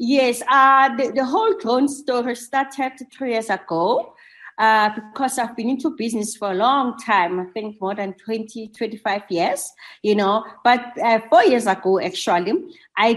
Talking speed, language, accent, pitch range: 170 wpm, English, South African, 205-265 Hz